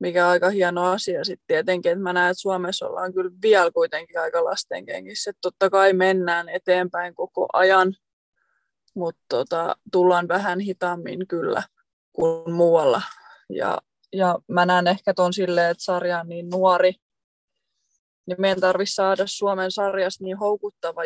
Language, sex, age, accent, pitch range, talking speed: Finnish, female, 20-39, native, 180-200 Hz, 145 wpm